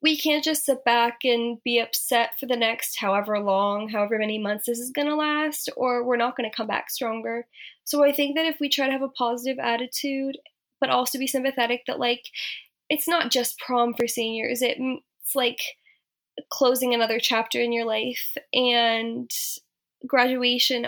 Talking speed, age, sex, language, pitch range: 180 wpm, 10-29, female, English, 235-285 Hz